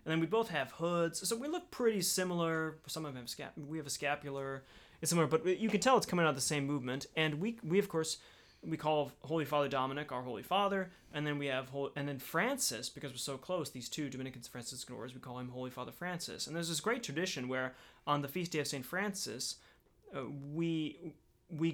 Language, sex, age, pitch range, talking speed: English, male, 30-49, 135-165 Hz, 235 wpm